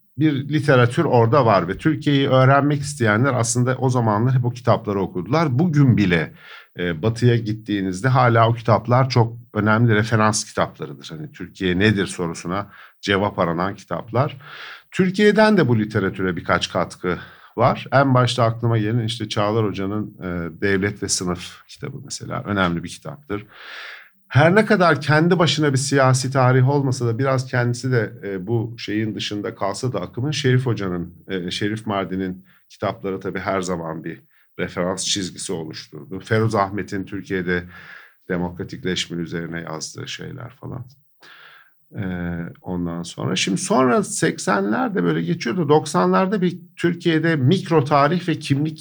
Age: 50-69